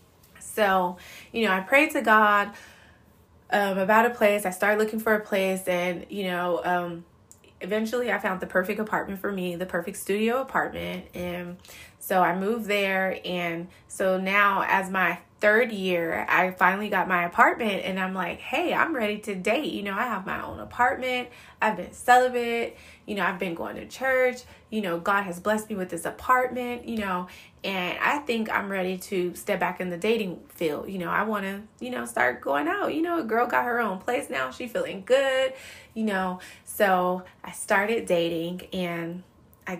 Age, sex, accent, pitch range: 20-39, female, American, 180-220 Hz